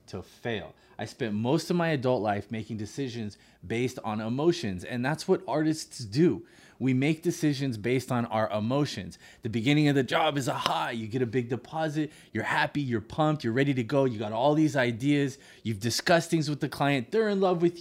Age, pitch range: 20-39, 115-155 Hz